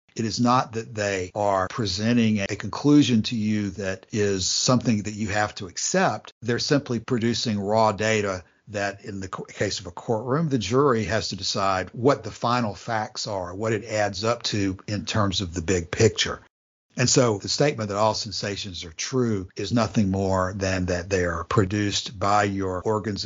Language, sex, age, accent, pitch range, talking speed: English, male, 60-79, American, 100-120 Hz, 185 wpm